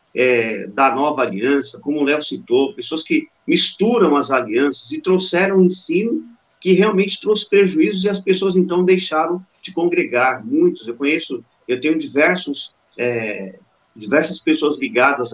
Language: Portuguese